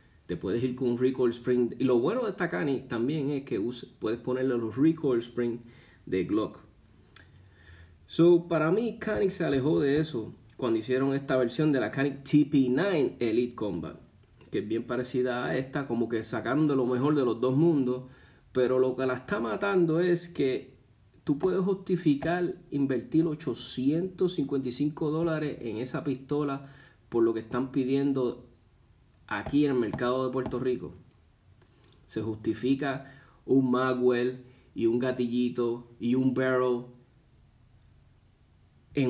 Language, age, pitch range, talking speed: Spanish, 30-49, 120-145 Hz, 145 wpm